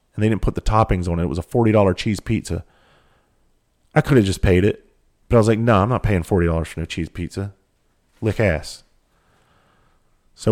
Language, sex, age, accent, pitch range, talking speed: English, male, 40-59, American, 95-115 Hz, 215 wpm